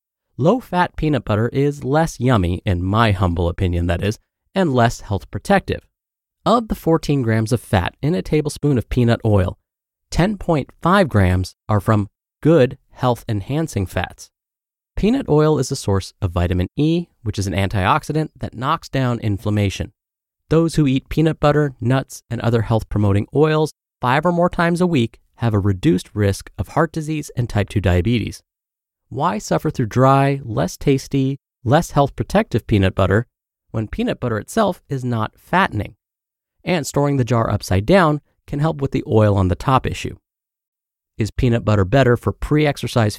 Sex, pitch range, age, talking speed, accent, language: male, 105-150 Hz, 30-49, 160 wpm, American, English